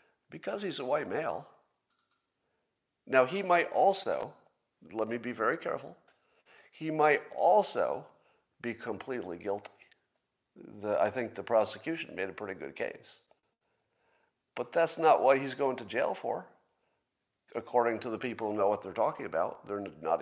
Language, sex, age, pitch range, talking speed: English, male, 50-69, 110-155 Hz, 150 wpm